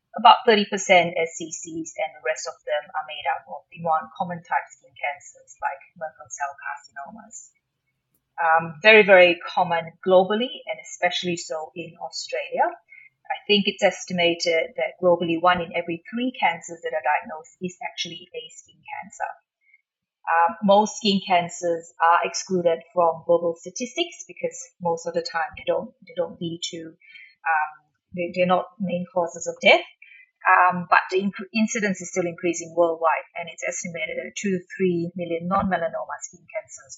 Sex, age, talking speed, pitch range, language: female, 30-49, 160 wpm, 170-205 Hz, English